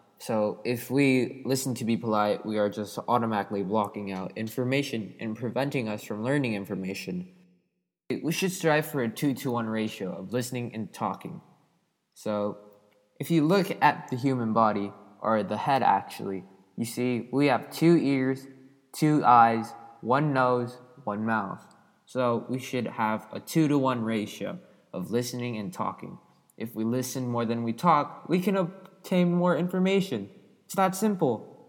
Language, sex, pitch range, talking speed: English, male, 110-145 Hz, 160 wpm